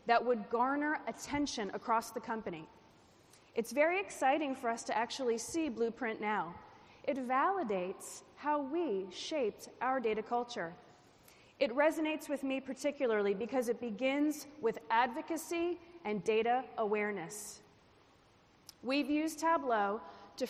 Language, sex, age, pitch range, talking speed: English, female, 30-49, 220-295 Hz, 125 wpm